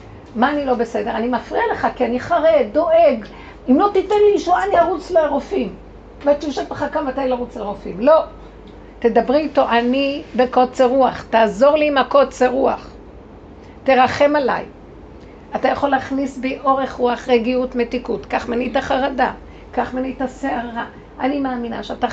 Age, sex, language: 50-69, female, Hebrew